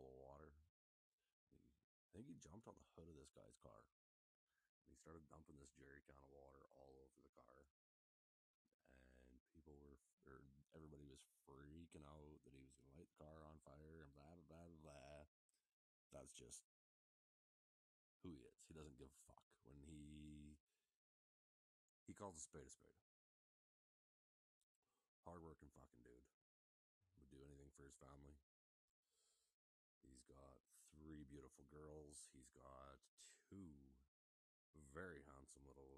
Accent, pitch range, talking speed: American, 70-80 Hz, 140 wpm